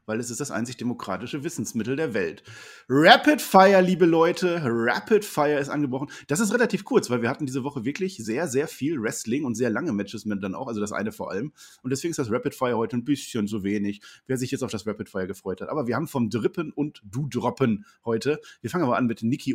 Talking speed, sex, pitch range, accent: 240 wpm, male, 115-160 Hz, German